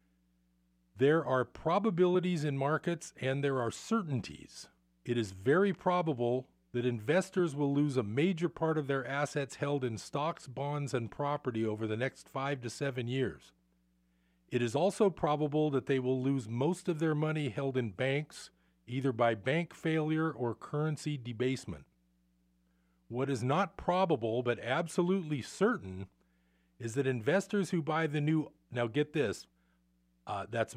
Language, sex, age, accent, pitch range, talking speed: English, male, 40-59, American, 110-155 Hz, 150 wpm